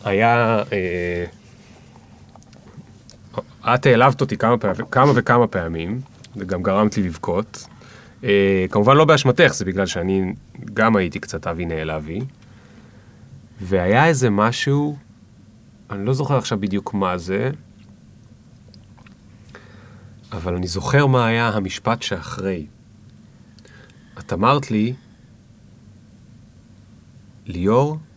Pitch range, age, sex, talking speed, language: 100-125 Hz, 30-49, male, 100 wpm, Hebrew